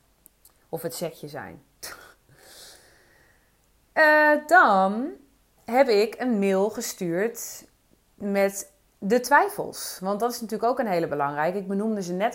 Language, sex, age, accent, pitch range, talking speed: English, female, 30-49, Dutch, 175-230 Hz, 125 wpm